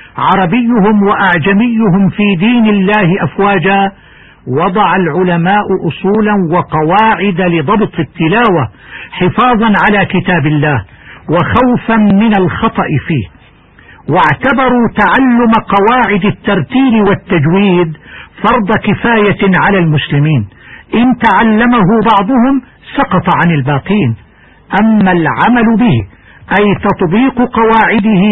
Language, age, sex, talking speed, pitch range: Arabic, 60-79, male, 85 wpm, 180-225 Hz